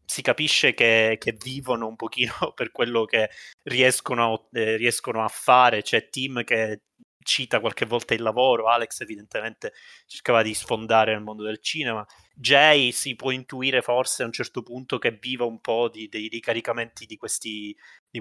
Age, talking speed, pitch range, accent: 20-39, 170 wpm, 110-125 Hz, native